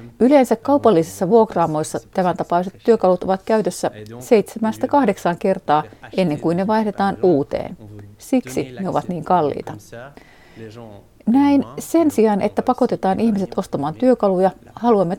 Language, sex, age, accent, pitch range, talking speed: Finnish, female, 40-59, native, 175-235 Hz, 120 wpm